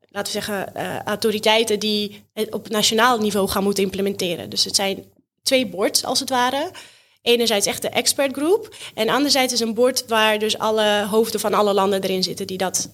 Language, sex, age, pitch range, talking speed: Dutch, female, 20-39, 210-255 Hz, 190 wpm